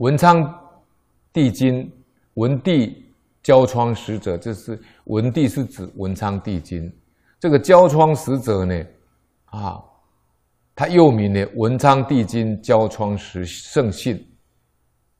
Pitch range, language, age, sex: 90-130 Hz, Chinese, 50-69, male